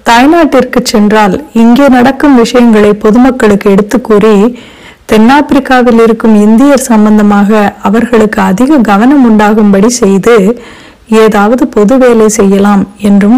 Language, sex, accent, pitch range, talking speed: Tamil, female, native, 210-245 Hz, 100 wpm